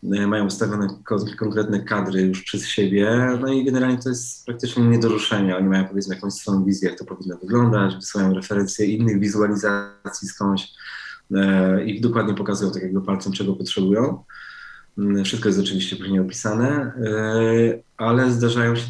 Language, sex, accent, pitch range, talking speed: Polish, male, native, 100-115 Hz, 155 wpm